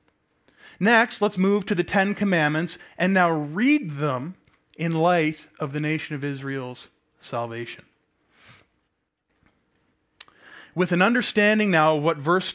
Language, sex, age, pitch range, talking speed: English, male, 20-39, 150-200 Hz, 125 wpm